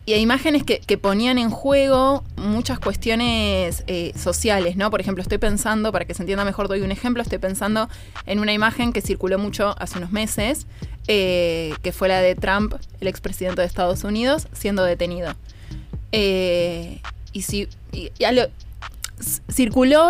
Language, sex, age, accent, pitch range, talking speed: Spanish, female, 20-39, Argentinian, 185-230 Hz, 165 wpm